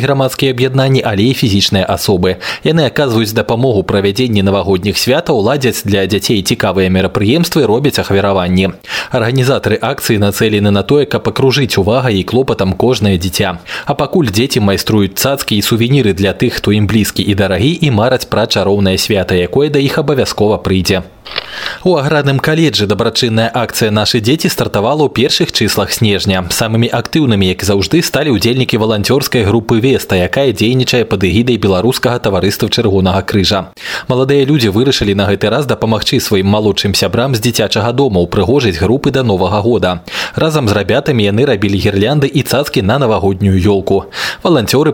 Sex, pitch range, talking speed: male, 100-130 Hz, 155 wpm